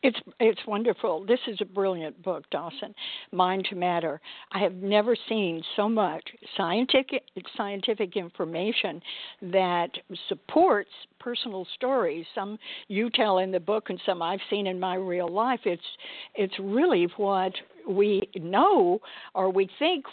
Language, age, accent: English, 60-79, American